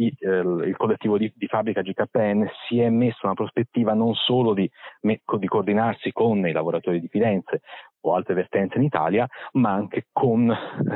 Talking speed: 155 wpm